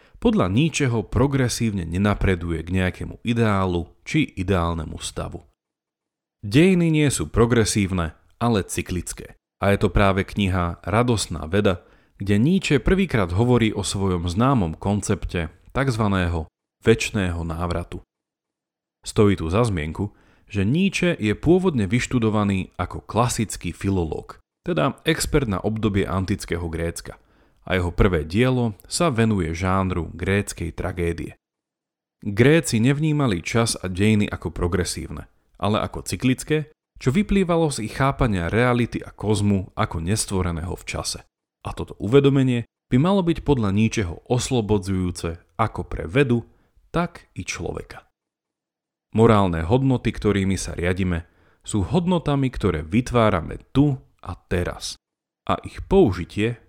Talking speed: 120 wpm